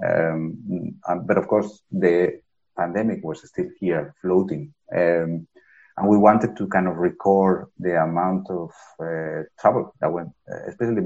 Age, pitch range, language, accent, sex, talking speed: 30-49, 85-100 Hz, Danish, Spanish, male, 140 wpm